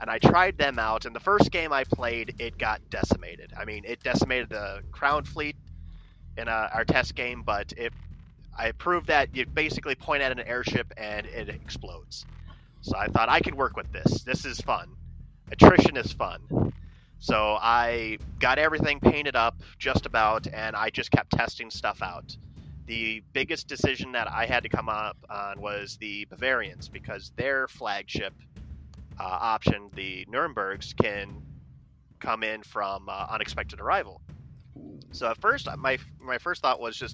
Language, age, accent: English, 30-49, American